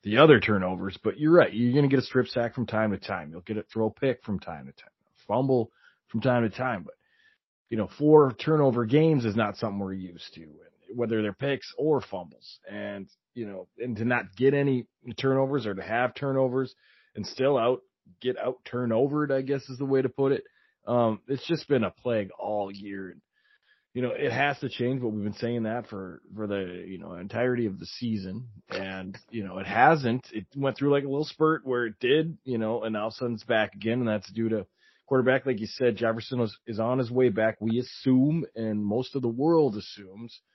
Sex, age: male, 30-49